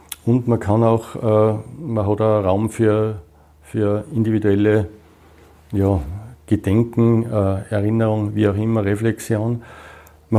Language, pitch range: German, 100-115 Hz